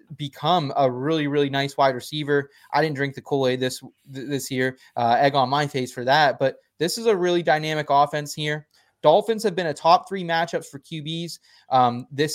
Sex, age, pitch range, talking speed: male, 20-39, 140-175 Hz, 200 wpm